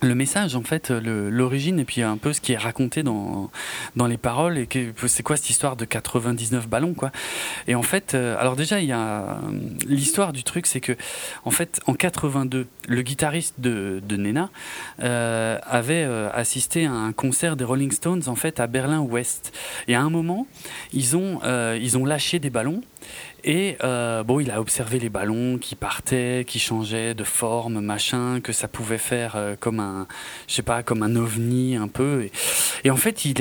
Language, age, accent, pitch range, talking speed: French, 30-49, French, 120-155 Hz, 200 wpm